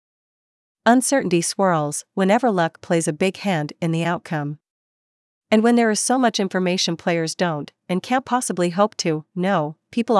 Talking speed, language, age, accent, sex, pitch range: 160 wpm, English, 40-59, American, female, 165-205 Hz